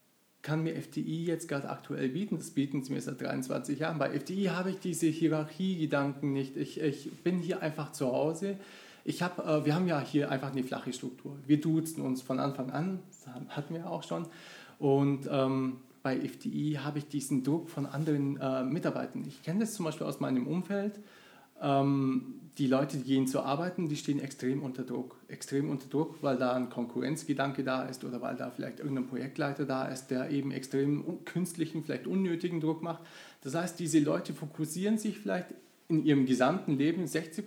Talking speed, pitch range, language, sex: 190 wpm, 135-165 Hz, German, male